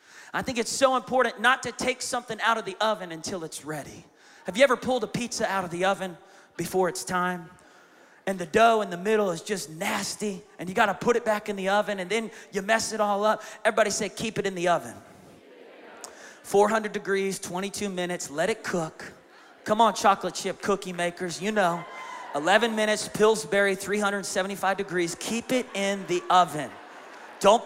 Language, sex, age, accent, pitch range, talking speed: English, male, 30-49, American, 180-230 Hz, 190 wpm